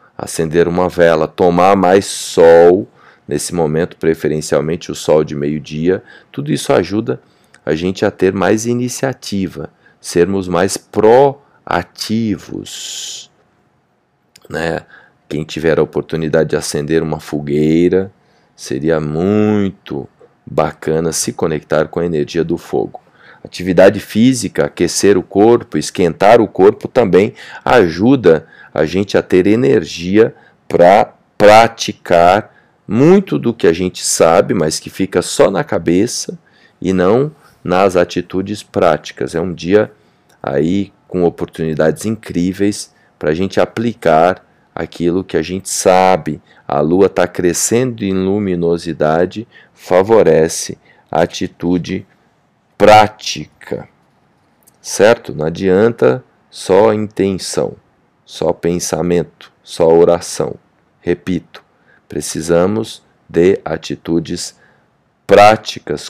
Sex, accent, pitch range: male, Brazilian, 80-100 Hz